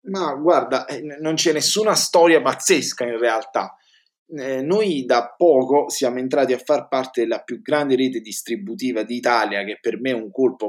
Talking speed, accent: 170 wpm, native